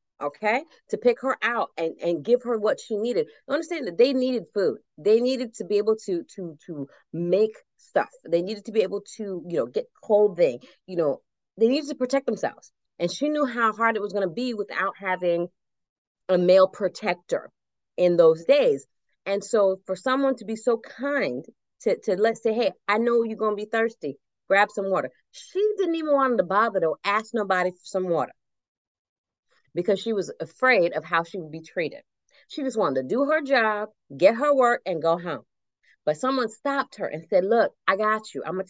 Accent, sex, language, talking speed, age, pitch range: American, female, English, 200 wpm, 30-49, 185-260 Hz